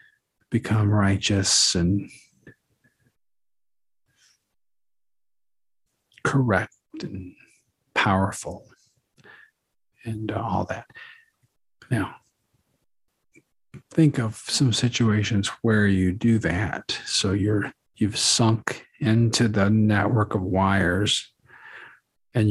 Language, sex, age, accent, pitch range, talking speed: English, male, 50-69, American, 100-120 Hz, 75 wpm